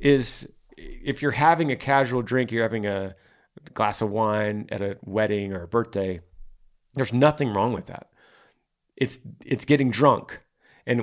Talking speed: 160 wpm